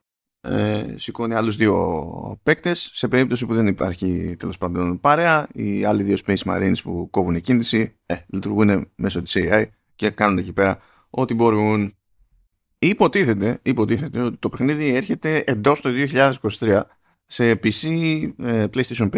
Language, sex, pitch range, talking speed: Greek, male, 100-130 Hz, 140 wpm